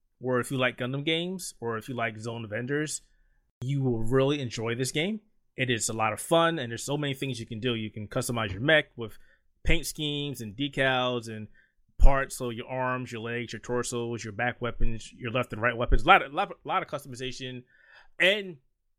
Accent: American